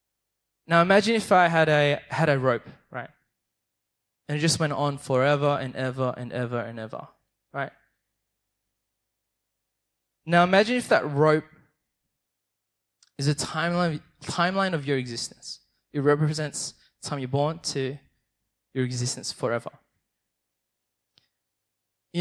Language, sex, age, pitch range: English, male, 20-39, 115-170 Hz